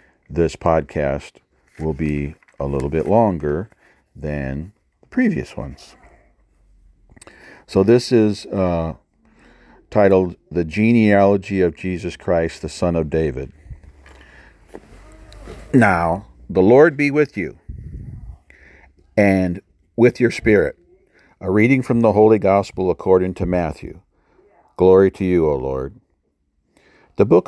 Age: 50-69